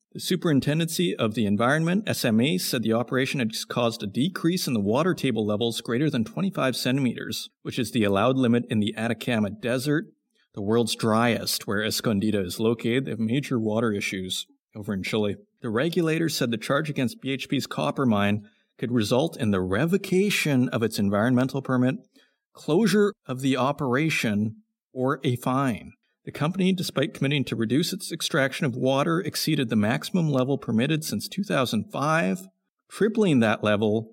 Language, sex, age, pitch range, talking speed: English, male, 50-69, 110-150 Hz, 160 wpm